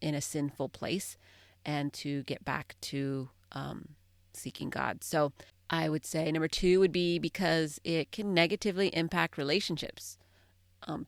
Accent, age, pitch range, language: American, 30-49, 135-170 Hz, English